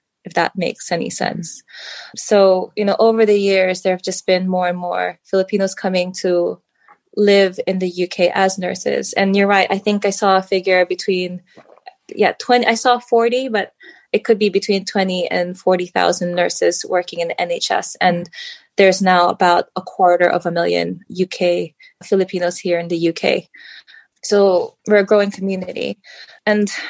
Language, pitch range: English, 180-220 Hz